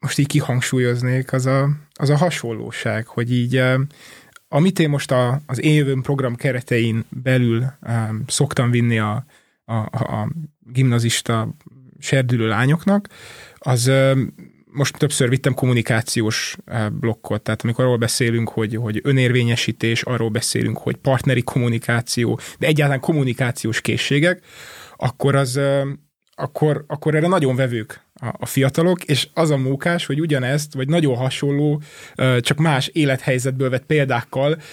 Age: 20-39